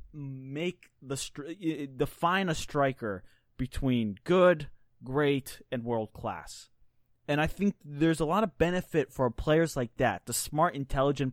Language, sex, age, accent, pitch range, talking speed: English, male, 20-39, American, 120-155 Hz, 145 wpm